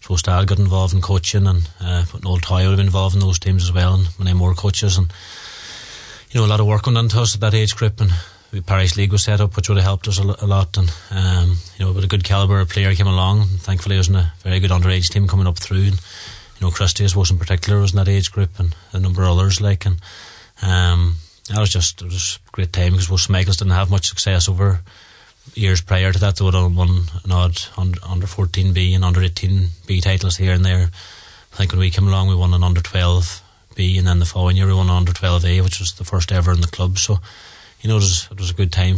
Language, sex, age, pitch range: English, male, 20-39, 90-100 Hz